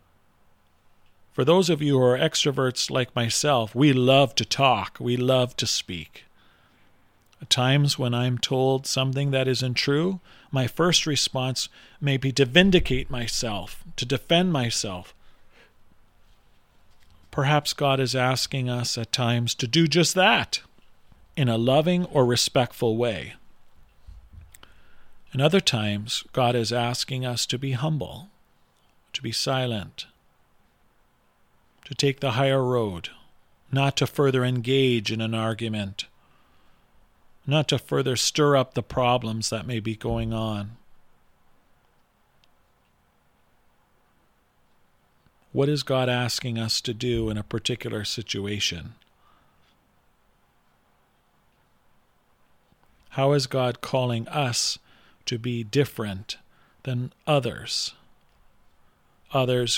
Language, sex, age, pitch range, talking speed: English, male, 40-59, 110-135 Hz, 115 wpm